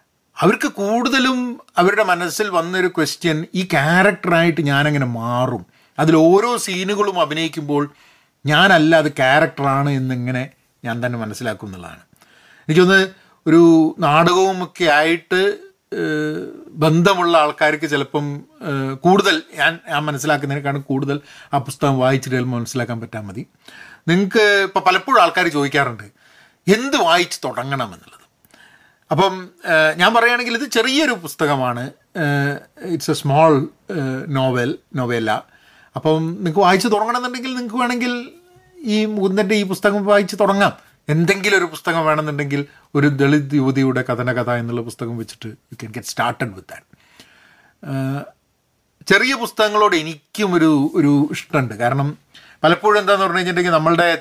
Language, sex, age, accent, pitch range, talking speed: Malayalam, male, 40-59, native, 140-195 Hz, 105 wpm